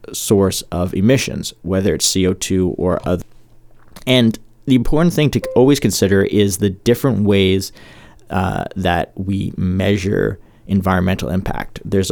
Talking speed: 130 wpm